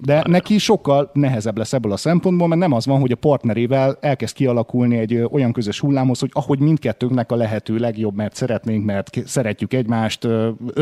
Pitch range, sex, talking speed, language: 115-155 Hz, male, 185 wpm, Hungarian